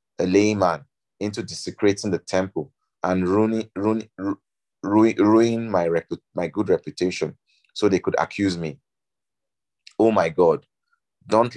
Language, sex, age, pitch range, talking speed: English, male, 30-49, 90-110 Hz, 130 wpm